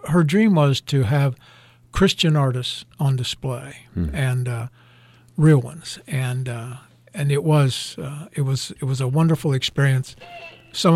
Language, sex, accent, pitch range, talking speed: English, male, American, 125-150 Hz, 150 wpm